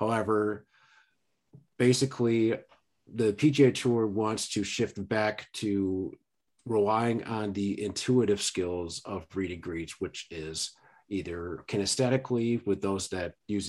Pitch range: 100-120 Hz